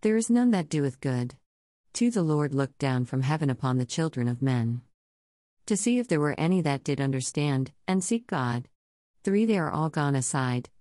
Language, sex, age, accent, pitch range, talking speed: English, female, 50-69, American, 125-175 Hz, 200 wpm